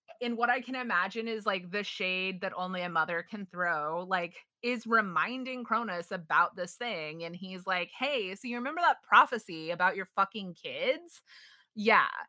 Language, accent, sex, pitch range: English, American, female, 190-250 Hz